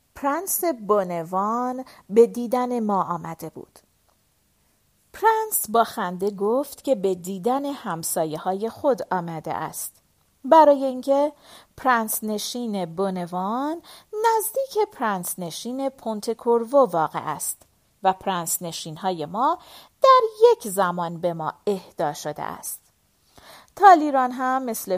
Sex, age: female, 40-59